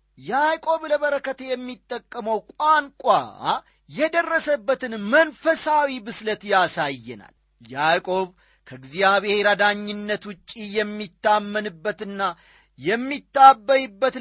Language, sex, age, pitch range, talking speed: Amharic, male, 40-59, 160-245 Hz, 60 wpm